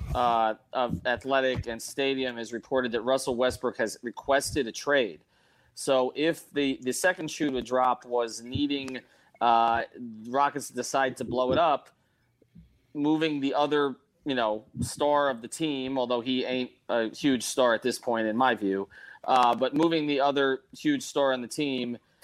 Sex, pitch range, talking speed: male, 120-145 Hz, 165 wpm